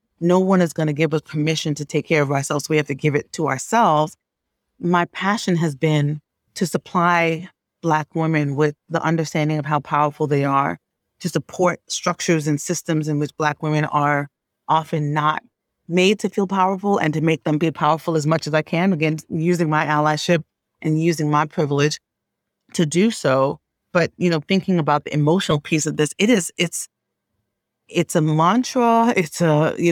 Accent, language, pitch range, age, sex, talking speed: American, English, 150-180 Hz, 30-49, female, 185 wpm